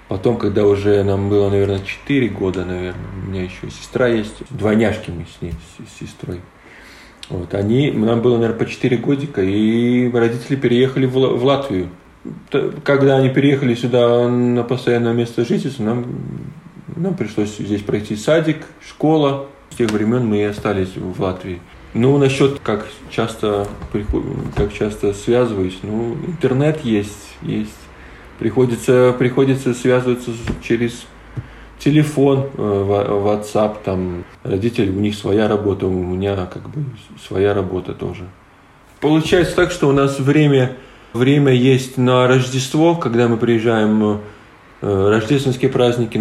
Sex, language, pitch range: male, Russian, 100-135 Hz